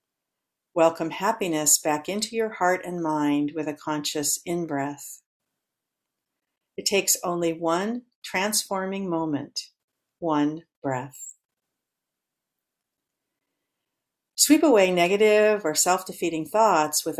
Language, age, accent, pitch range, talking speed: English, 60-79, American, 155-255 Hz, 95 wpm